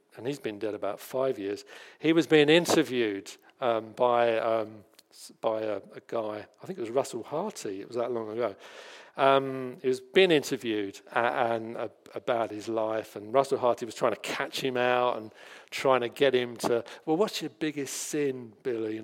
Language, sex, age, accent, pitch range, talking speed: English, male, 50-69, British, 115-155 Hz, 195 wpm